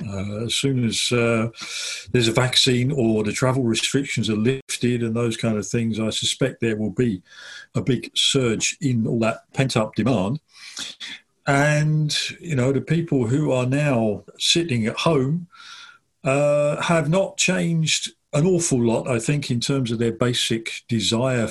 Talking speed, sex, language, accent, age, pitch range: 160 wpm, male, English, British, 50-69, 110-130 Hz